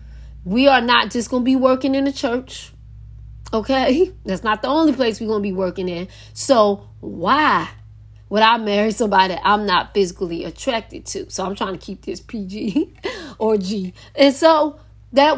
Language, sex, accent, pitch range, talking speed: English, female, American, 195-270 Hz, 180 wpm